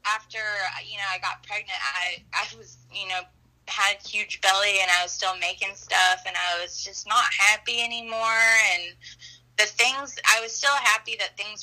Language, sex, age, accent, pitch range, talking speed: English, female, 20-39, American, 180-235 Hz, 190 wpm